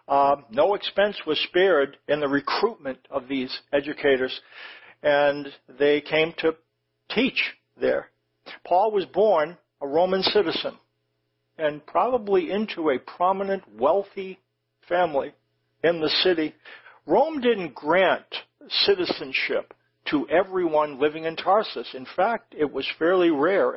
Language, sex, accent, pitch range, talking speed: English, male, American, 135-190 Hz, 120 wpm